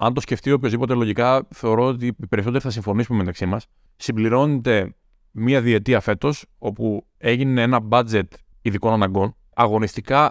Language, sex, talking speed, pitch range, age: Greek, male, 145 wpm, 105-135 Hz, 20-39